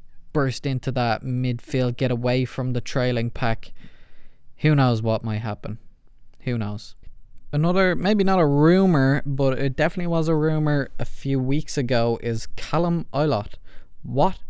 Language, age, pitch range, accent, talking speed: English, 20-39, 120-150 Hz, Irish, 150 wpm